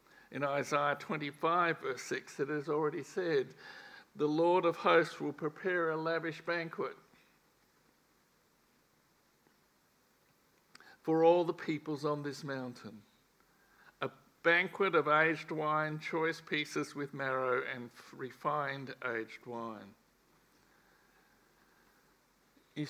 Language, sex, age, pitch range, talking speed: English, male, 60-79, 140-170 Hz, 100 wpm